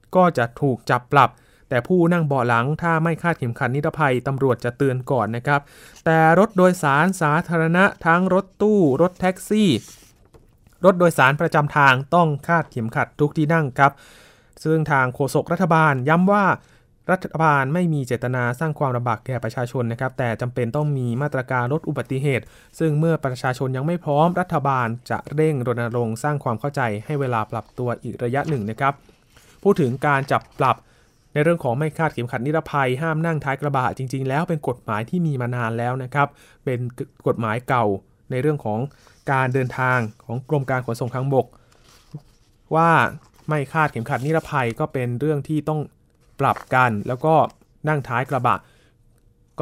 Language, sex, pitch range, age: Thai, male, 120-155 Hz, 20-39